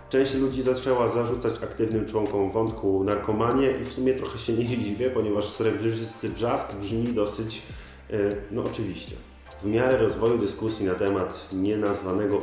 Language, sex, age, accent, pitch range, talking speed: Polish, male, 40-59, native, 100-115 Hz, 145 wpm